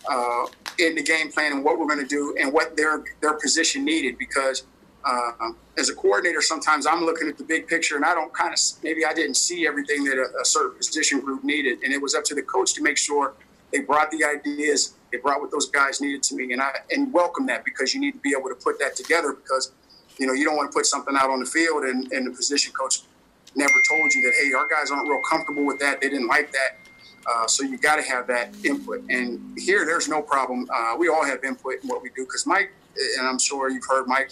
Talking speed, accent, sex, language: 255 wpm, American, male, English